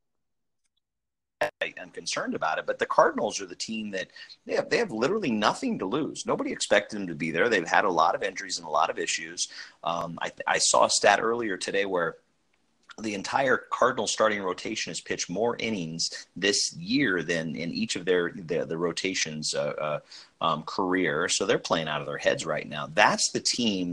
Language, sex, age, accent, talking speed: English, male, 40-59, American, 195 wpm